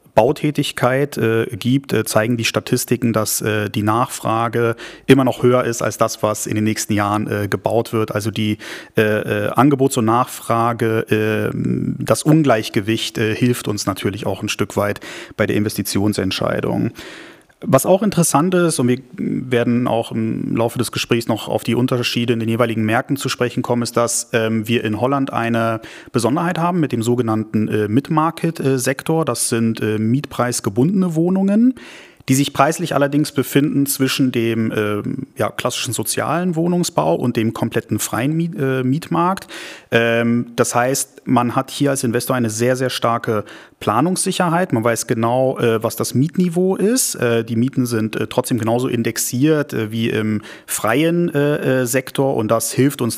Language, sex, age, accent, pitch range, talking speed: German, male, 30-49, German, 110-135 Hz, 160 wpm